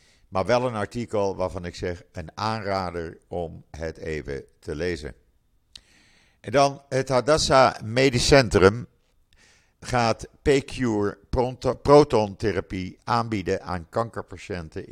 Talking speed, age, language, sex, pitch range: 105 wpm, 50-69, Dutch, male, 90-110 Hz